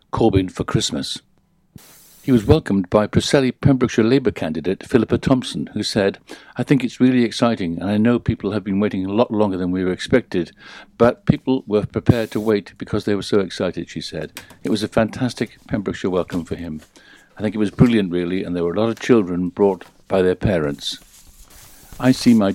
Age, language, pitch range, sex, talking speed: 60-79, English, 95-125 Hz, male, 200 wpm